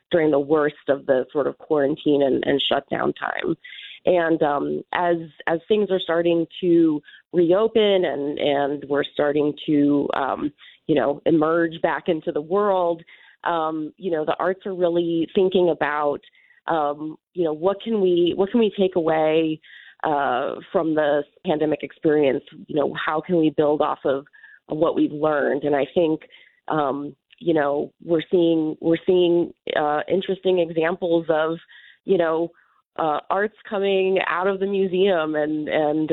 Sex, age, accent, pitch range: female, 30-49, American, 150-180 Hz